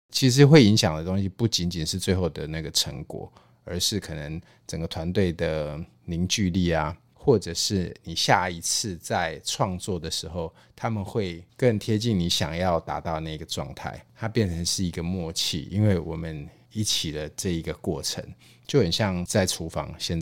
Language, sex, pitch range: Chinese, male, 80-100 Hz